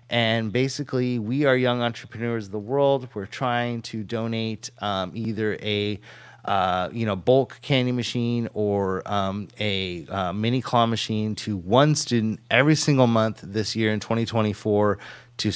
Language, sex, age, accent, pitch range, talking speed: English, male, 30-49, American, 105-125 Hz, 155 wpm